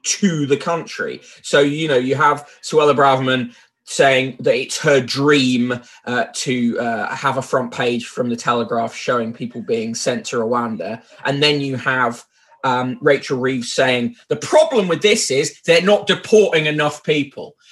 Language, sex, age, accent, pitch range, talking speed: English, male, 20-39, British, 140-200 Hz, 165 wpm